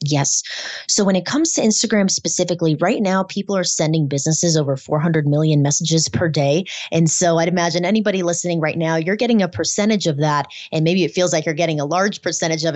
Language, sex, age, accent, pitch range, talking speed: English, female, 20-39, American, 145-185 Hz, 210 wpm